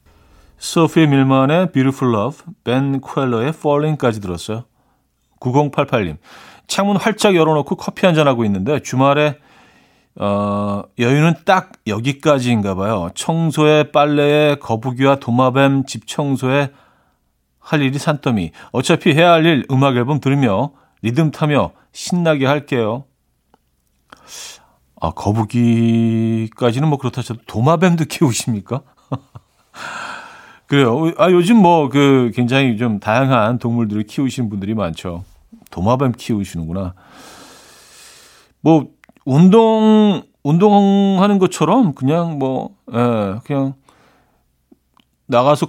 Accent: native